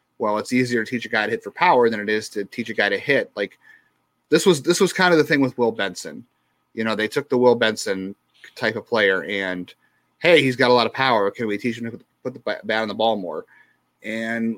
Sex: male